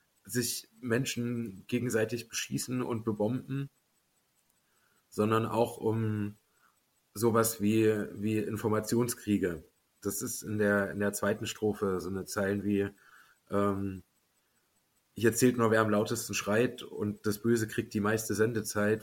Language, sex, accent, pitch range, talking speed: German, male, German, 105-120 Hz, 125 wpm